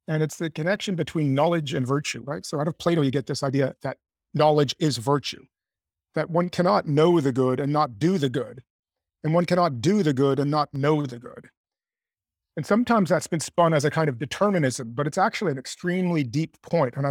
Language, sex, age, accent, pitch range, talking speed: English, male, 40-59, American, 140-170 Hz, 215 wpm